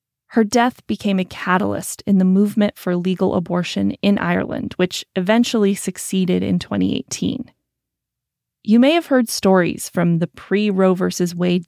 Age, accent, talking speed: 30-49, American, 145 wpm